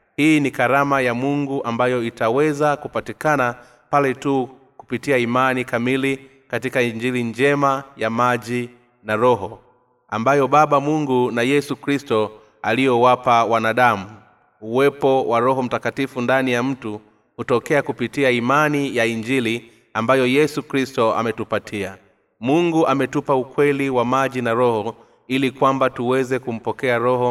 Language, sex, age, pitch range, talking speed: Swahili, male, 30-49, 115-135 Hz, 125 wpm